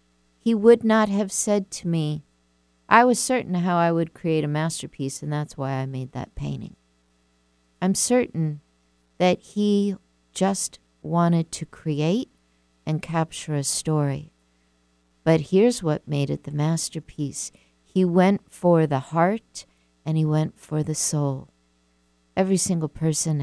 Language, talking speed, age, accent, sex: English, 145 wpm, 50-69, American, female